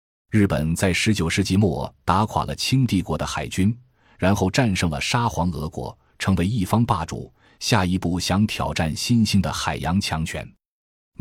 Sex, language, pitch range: male, Chinese, 80-105 Hz